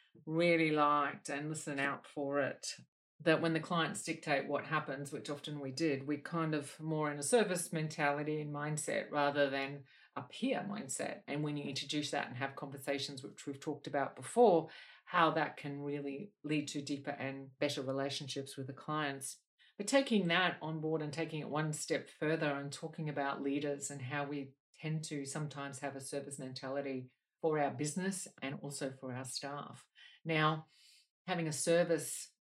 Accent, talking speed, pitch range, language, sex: Australian, 180 wpm, 140-155 Hz, English, female